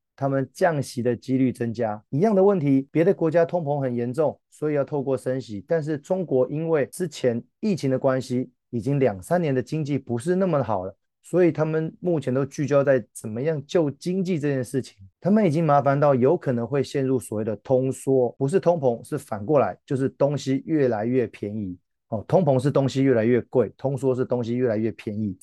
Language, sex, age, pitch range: Chinese, male, 30-49, 115-150 Hz